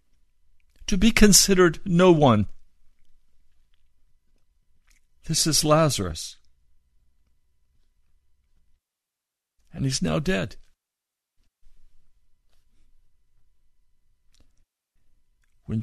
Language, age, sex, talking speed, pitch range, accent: English, 60-79, male, 50 wpm, 75-110 Hz, American